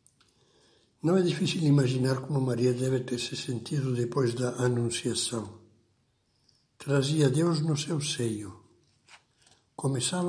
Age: 60-79